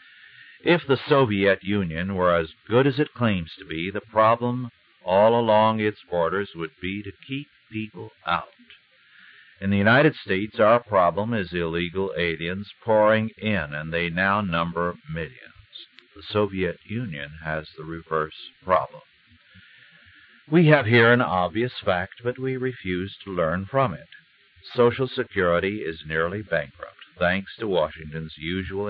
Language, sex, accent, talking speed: English, male, American, 145 wpm